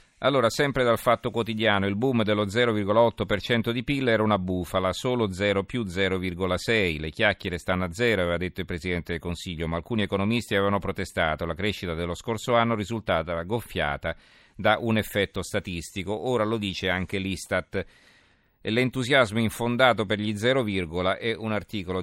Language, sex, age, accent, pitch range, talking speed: Italian, male, 40-59, native, 95-115 Hz, 160 wpm